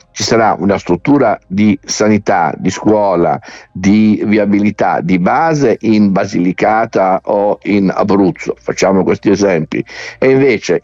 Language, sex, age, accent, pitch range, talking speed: Italian, male, 50-69, native, 90-110 Hz, 120 wpm